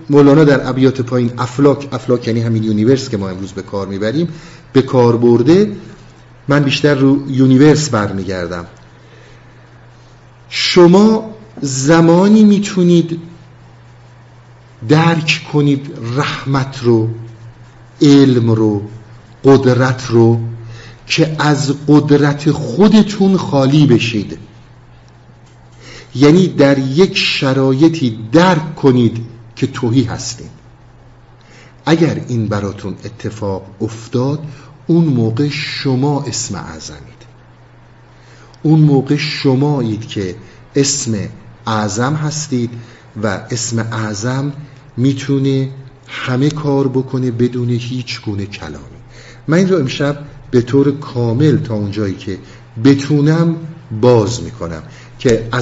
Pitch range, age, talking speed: 115-145 Hz, 50-69, 95 wpm